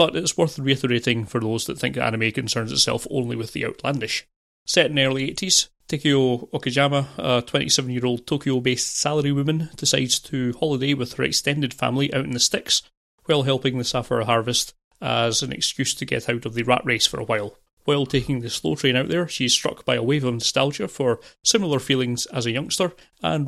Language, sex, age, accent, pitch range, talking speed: English, male, 30-49, British, 120-140 Hz, 195 wpm